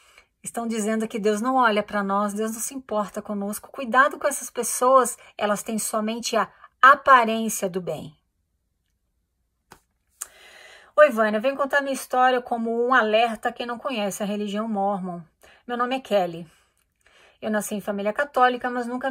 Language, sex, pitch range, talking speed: Portuguese, female, 205-260 Hz, 160 wpm